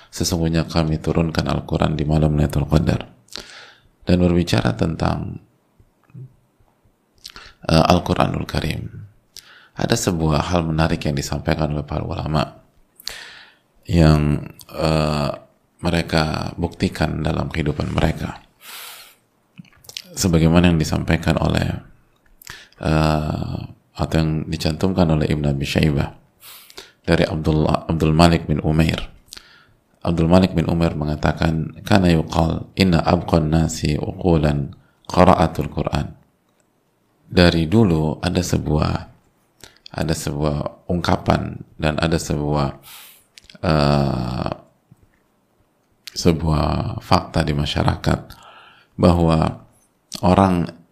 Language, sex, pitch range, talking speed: Indonesian, male, 75-90 Hz, 90 wpm